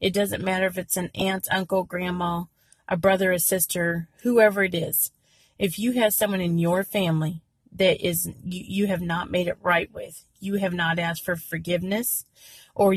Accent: American